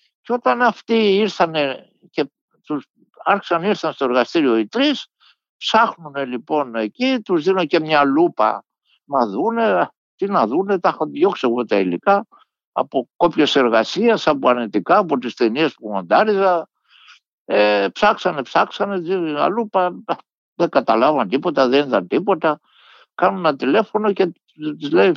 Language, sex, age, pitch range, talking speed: Greek, male, 60-79, 155-220 Hz, 140 wpm